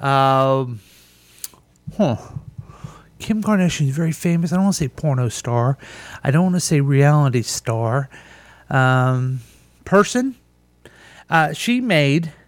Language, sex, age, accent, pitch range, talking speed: English, male, 40-59, American, 135-175 Hz, 125 wpm